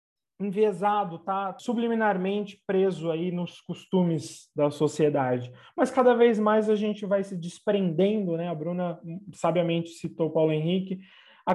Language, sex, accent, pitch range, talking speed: Portuguese, male, Brazilian, 155-195 Hz, 140 wpm